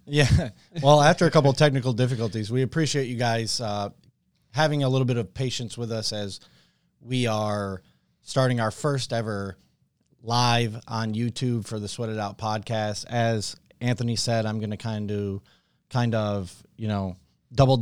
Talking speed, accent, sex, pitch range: 165 wpm, American, male, 105-125 Hz